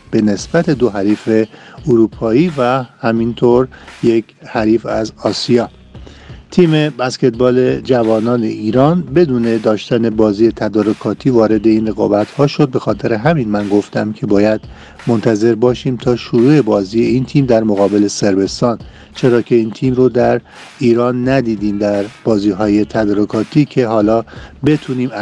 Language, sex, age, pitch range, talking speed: Persian, male, 50-69, 110-130 Hz, 135 wpm